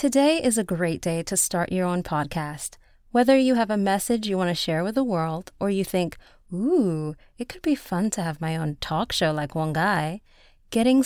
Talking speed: 215 wpm